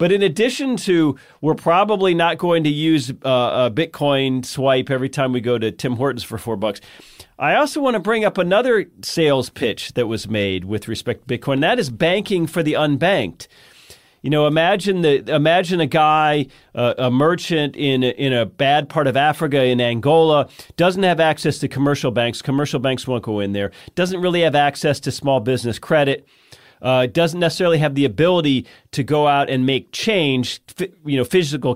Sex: male